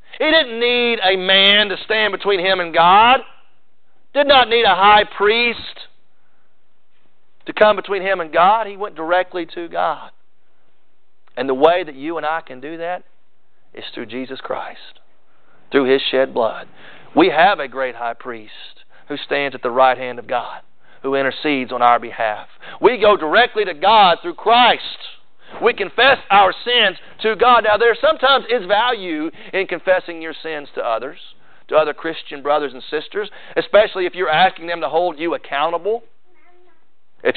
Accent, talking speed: American, 170 wpm